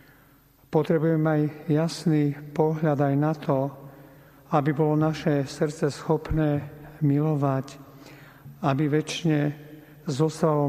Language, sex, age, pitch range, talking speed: Slovak, male, 50-69, 140-150 Hz, 90 wpm